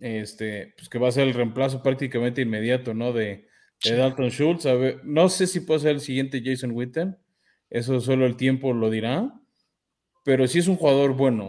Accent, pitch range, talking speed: Mexican, 125-150 Hz, 200 wpm